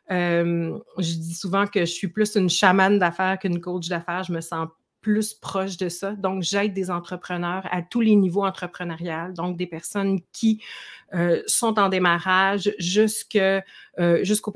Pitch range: 170-195 Hz